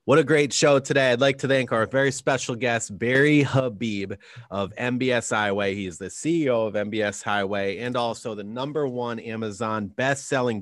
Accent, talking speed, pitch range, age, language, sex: American, 175 wpm, 100-125 Hz, 30-49, English, male